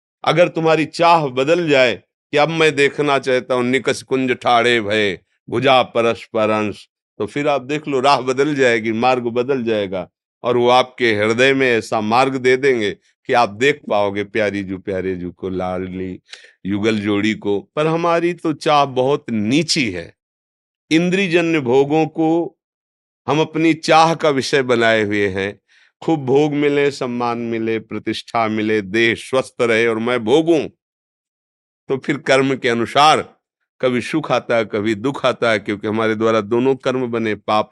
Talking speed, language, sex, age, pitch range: 160 wpm, Hindi, male, 50-69, 110-150 Hz